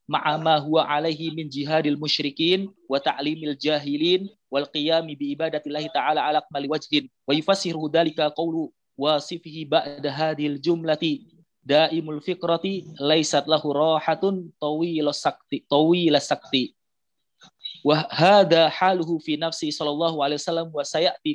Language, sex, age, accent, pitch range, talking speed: Indonesian, male, 30-49, native, 150-170 Hz, 115 wpm